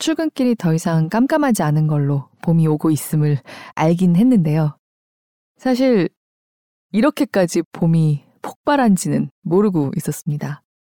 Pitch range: 150-205 Hz